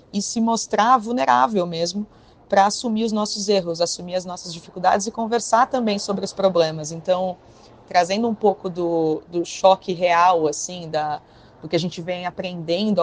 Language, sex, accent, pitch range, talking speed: Portuguese, female, Brazilian, 175-215 Hz, 165 wpm